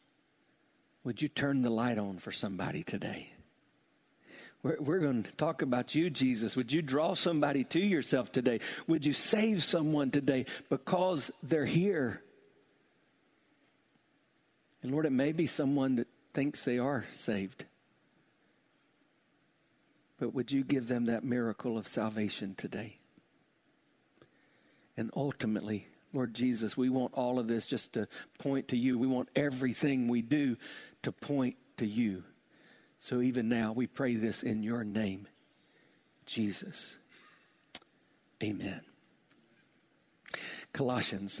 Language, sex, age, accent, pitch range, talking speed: English, male, 60-79, American, 120-145 Hz, 130 wpm